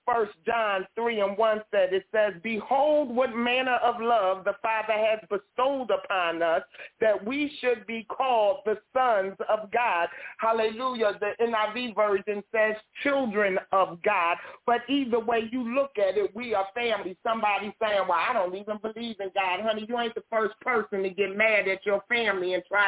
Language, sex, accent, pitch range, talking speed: English, male, American, 205-255 Hz, 180 wpm